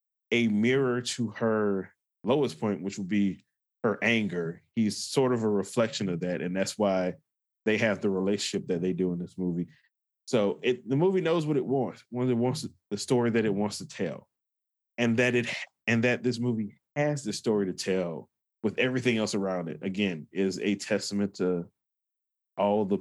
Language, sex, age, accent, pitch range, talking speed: English, male, 20-39, American, 95-115 Hz, 190 wpm